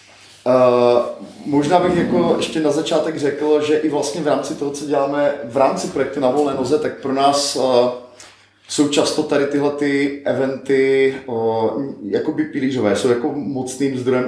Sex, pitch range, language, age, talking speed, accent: male, 120-150 Hz, Czech, 30-49, 160 wpm, native